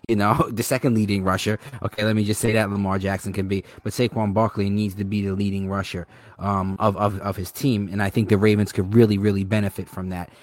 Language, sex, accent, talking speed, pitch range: English, male, American, 240 wpm, 100-115 Hz